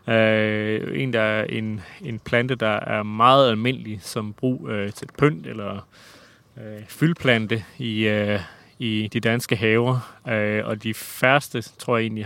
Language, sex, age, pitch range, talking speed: Danish, male, 30-49, 105-125 Hz, 160 wpm